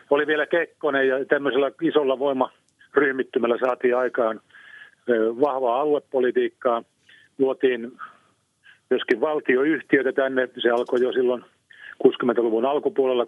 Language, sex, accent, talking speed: Finnish, male, native, 95 wpm